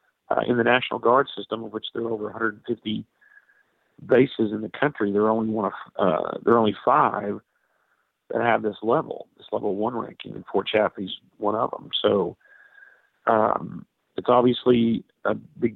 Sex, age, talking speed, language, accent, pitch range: male, 50-69, 170 wpm, English, American, 110-130 Hz